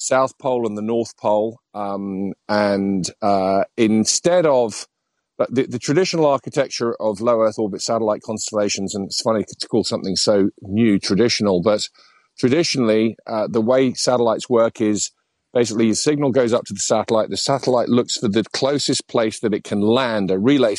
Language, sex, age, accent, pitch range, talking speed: English, male, 50-69, British, 105-125 Hz, 170 wpm